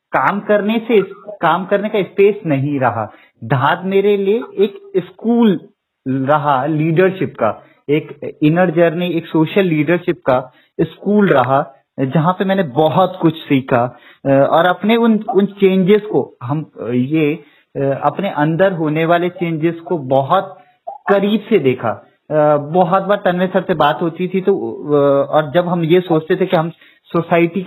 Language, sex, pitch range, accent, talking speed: Hindi, male, 150-195 Hz, native, 150 wpm